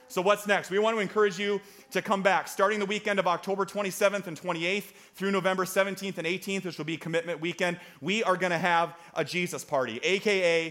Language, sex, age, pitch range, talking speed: English, male, 30-49, 165-205 Hz, 215 wpm